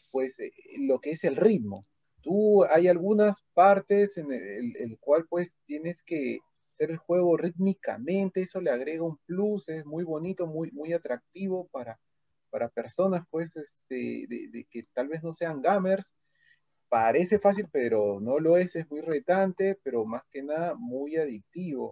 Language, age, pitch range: Spanish, 30-49, 140-185 Hz